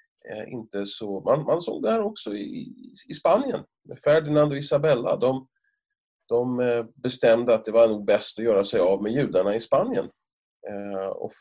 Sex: male